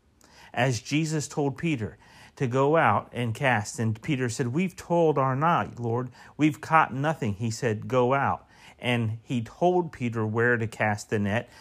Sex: male